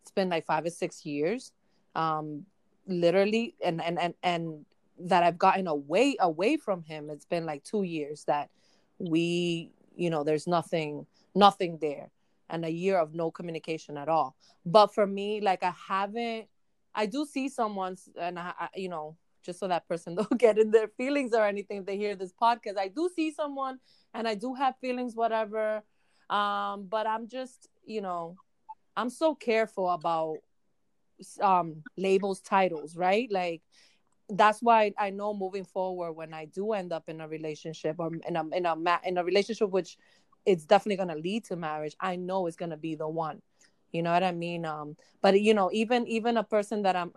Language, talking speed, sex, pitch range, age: English, 190 wpm, female, 165-215 Hz, 20-39